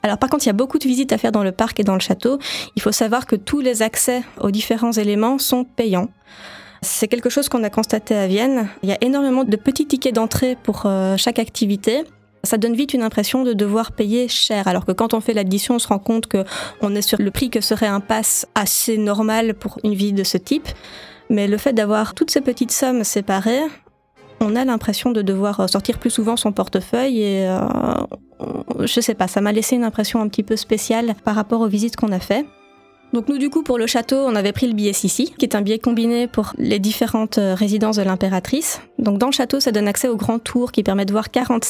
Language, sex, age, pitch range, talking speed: French, female, 20-39, 205-250 Hz, 235 wpm